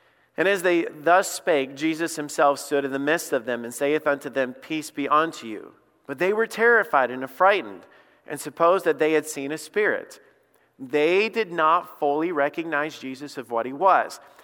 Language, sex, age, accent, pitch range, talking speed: English, male, 40-59, American, 140-185 Hz, 185 wpm